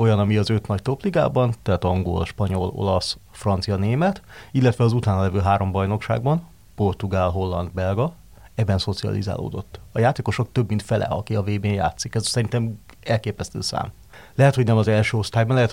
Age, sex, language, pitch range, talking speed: 30-49, male, Hungarian, 100-125 Hz, 160 wpm